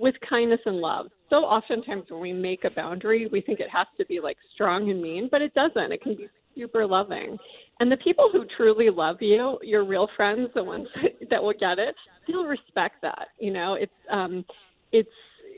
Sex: female